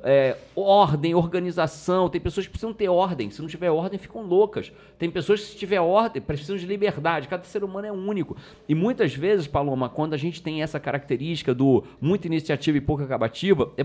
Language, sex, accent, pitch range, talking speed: Portuguese, male, Brazilian, 140-195 Hz, 200 wpm